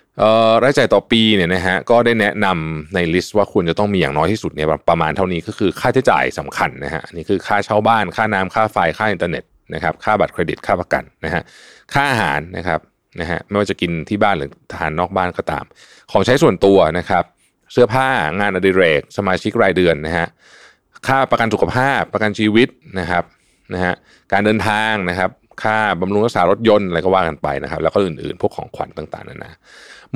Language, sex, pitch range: Thai, male, 85-110 Hz